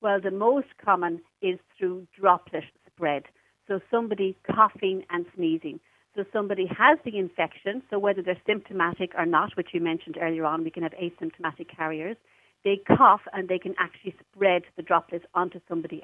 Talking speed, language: 170 wpm, English